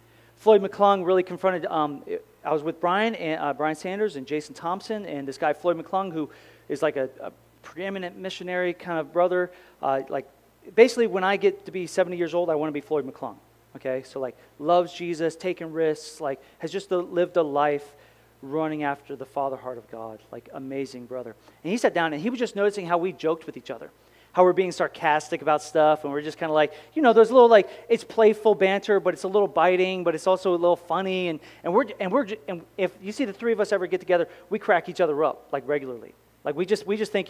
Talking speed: 235 wpm